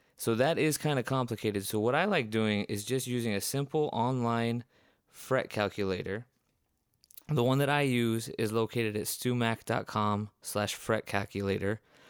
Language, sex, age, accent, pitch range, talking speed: English, male, 20-39, American, 100-125 Hz, 155 wpm